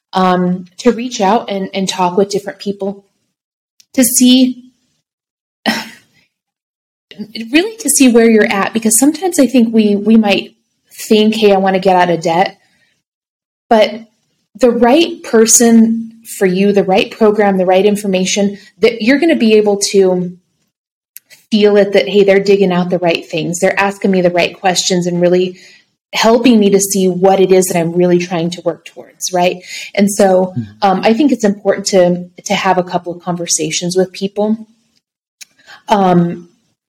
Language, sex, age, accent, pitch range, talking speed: English, female, 30-49, American, 180-215 Hz, 170 wpm